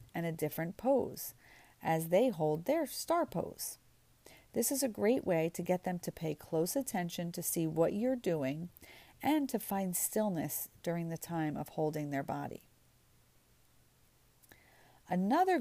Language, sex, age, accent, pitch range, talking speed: English, female, 40-59, American, 160-220 Hz, 150 wpm